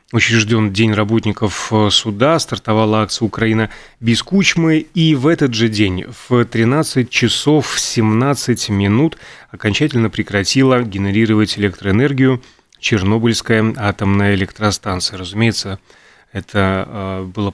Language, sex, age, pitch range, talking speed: Russian, male, 30-49, 100-125 Hz, 100 wpm